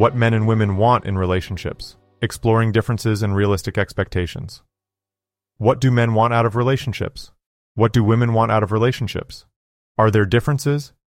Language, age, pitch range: English, 30-49, 95-115 Hz